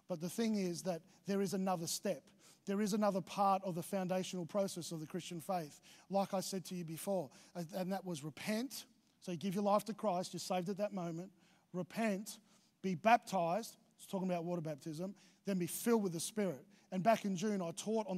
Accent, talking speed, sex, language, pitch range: Australian, 210 wpm, male, English, 170-205 Hz